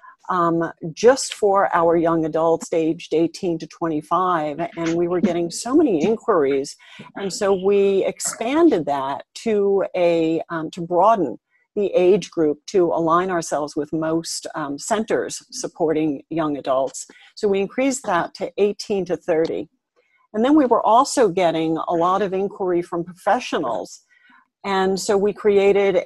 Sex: female